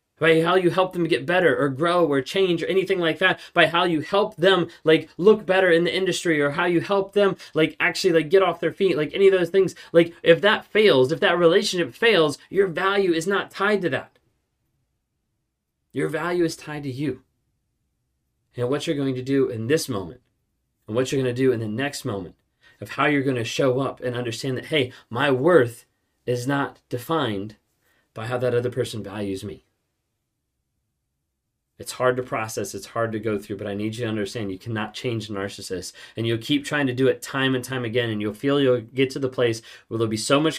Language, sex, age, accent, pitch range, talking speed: English, male, 30-49, American, 115-160 Hz, 220 wpm